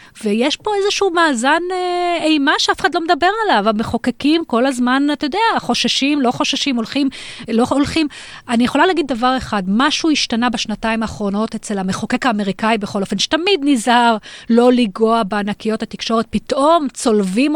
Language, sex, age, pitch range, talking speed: Hebrew, female, 30-49, 220-280 Hz, 150 wpm